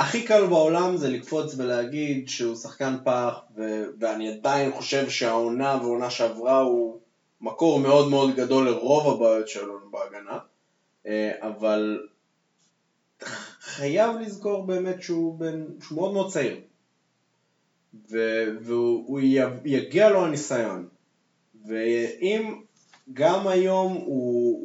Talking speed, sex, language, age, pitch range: 110 wpm, male, Hebrew, 20-39, 120-165 Hz